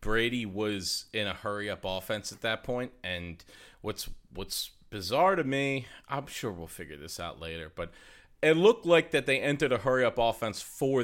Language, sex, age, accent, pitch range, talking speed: English, male, 40-59, American, 110-160 Hz, 180 wpm